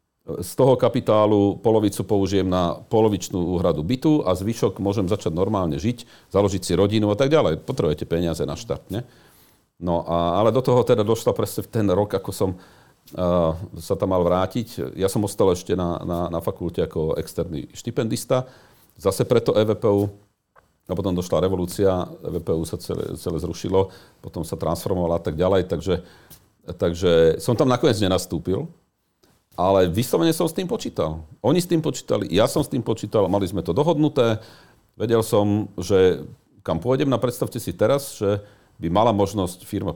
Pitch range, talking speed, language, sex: 85-110 Hz, 165 wpm, Slovak, male